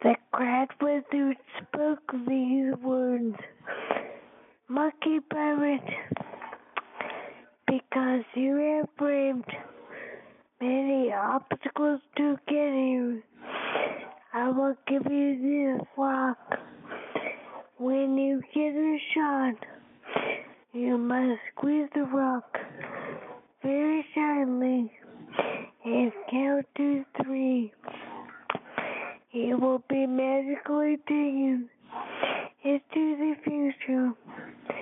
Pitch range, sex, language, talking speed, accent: 250-285 Hz, female, English, 80 wpm, American